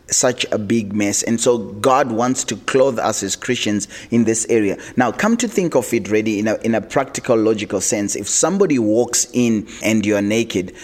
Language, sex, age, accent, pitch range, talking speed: English, male, 30-49, South African, 115-145 Hz, 205 wpm